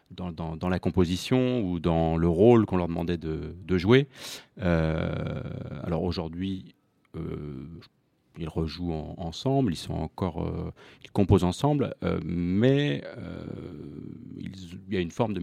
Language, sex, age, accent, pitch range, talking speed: French, male, 30-49, French, 85-105 Hz, 155 wpm